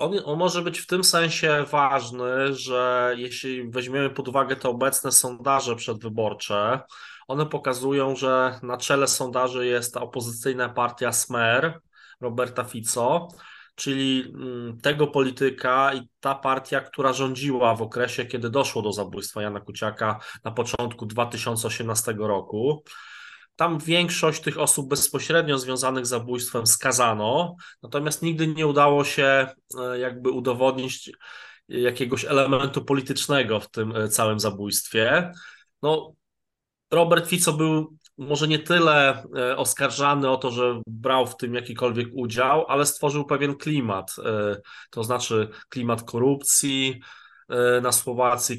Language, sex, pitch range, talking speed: Polish, male, 120-135 Hz, 120 wpm